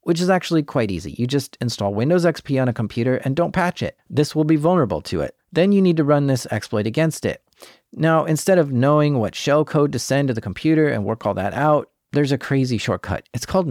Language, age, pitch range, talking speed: English, 40-59, 120-150 Hz, 240 wpm